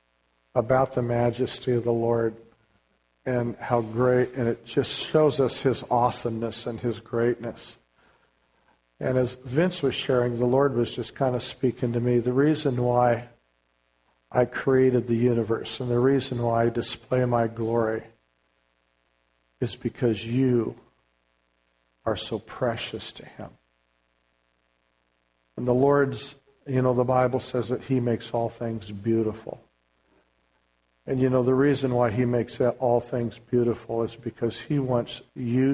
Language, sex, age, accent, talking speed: English, male, 50-69, American, 145 wpm